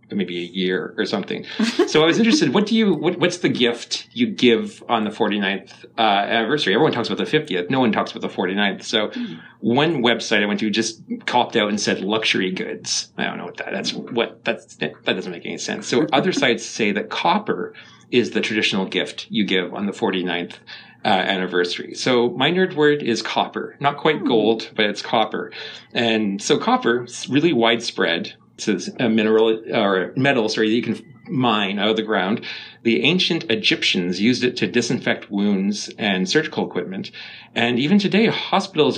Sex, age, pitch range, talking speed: male, 40-59, 105-140 Hz, 190 wpm